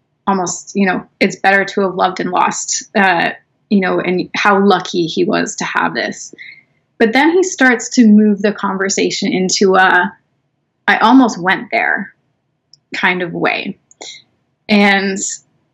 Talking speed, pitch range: 150 wpm, 180-230 Hz